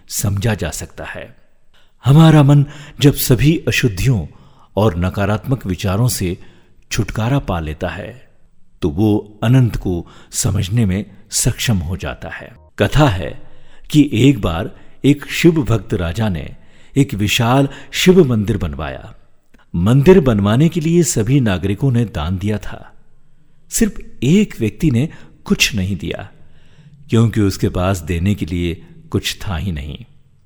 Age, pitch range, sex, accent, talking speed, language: 50-69, 90-130 Hz, male, native, 135 wpm, Hindi